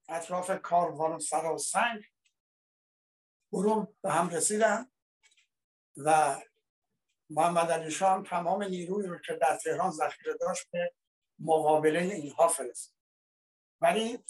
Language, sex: Persian, male